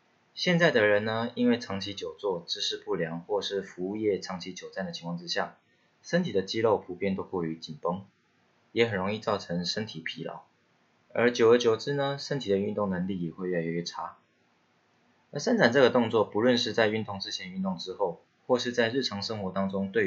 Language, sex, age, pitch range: Chinese, male, 20-39, 95-135 Hz